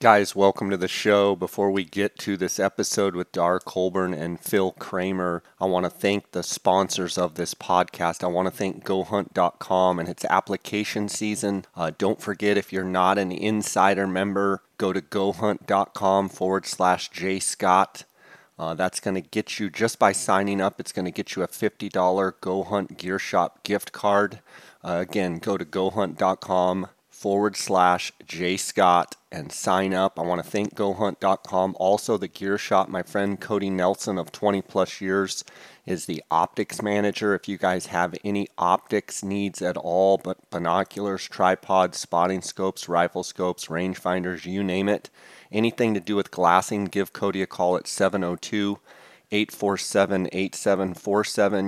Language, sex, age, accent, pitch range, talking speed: English, male, 30-49, American, 90-100 Hz, 165 wpm